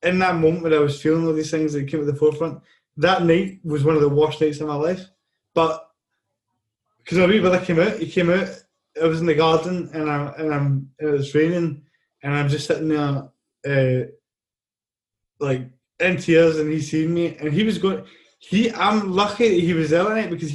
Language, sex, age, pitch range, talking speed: English, male, 20-39, 155-195 Hz, 220 wpm